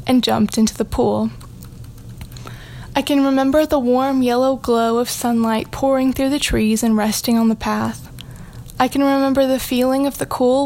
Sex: female